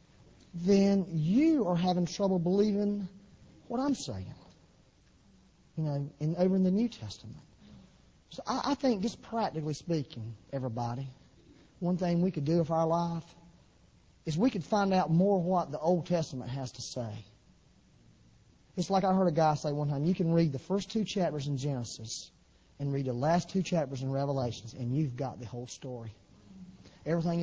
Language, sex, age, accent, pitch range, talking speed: English, male, 40-59, American, 135-180 Hz, 175 wpm